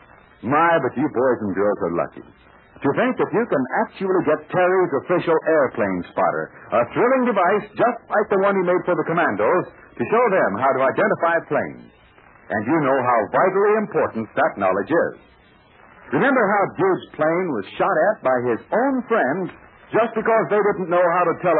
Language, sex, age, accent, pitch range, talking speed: English, male, 60-79, American, 170-230 Hz, 185 wpm